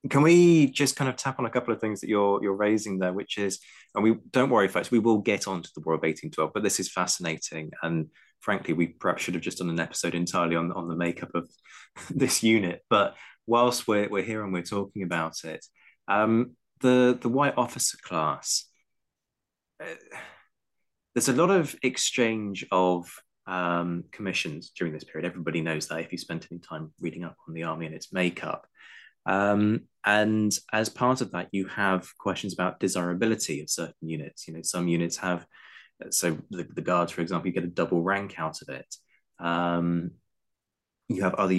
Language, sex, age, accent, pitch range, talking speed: English, male, 20-39, British, 85-115 Hz, 195 wpm